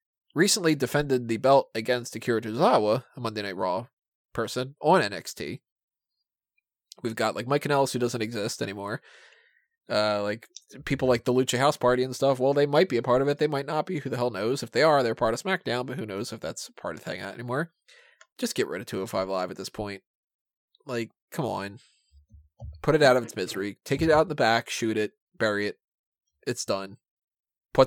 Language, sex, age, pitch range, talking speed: English, male, 20-39, 110-145 Hz, 205 wpm